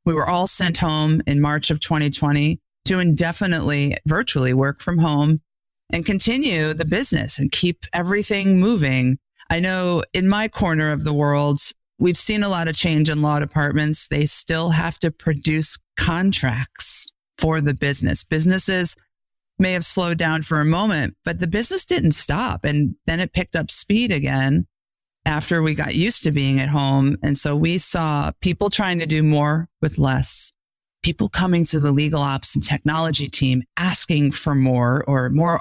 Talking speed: 170 wpm